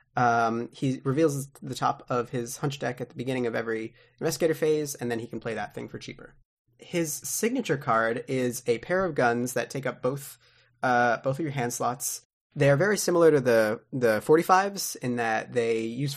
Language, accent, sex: English, American, male